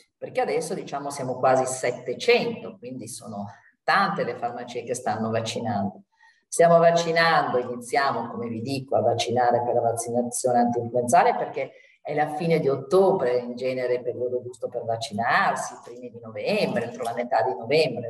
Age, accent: 40-59, native